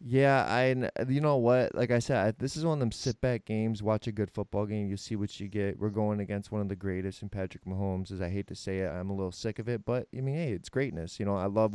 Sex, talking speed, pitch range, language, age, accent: male, 300 wpm, 105-135 Hz, English, 20-39, American